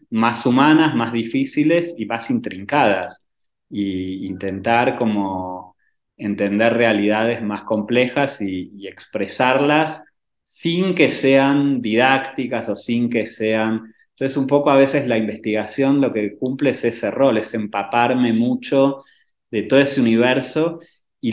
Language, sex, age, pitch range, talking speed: Spanish, male, 30-49, 100-130 Hz, 130 wpm